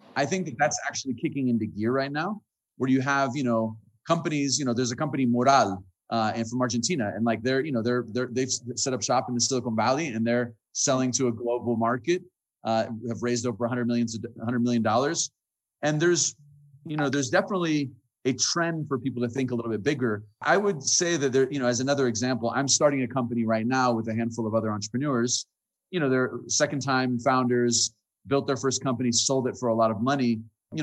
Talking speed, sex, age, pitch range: 220 wpm, male, 30-49, 120-145 Hz